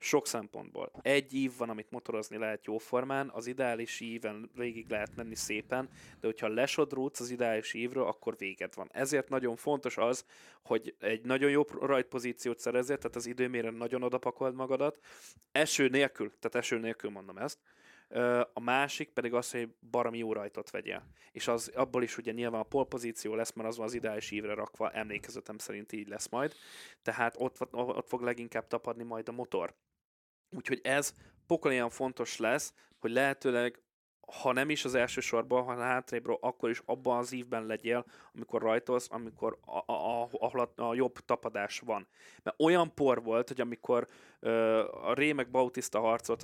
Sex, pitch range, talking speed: male, 115-130 Hz, 170 wpm